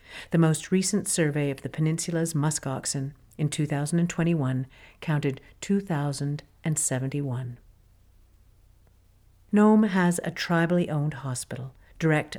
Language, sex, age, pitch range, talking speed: English, female, 50-69, 140-175 Hz, 95 wpm